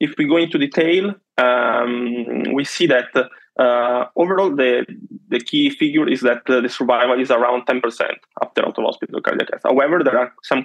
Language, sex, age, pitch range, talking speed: English, male, 20-39, 125-140 Hz, 175 wpm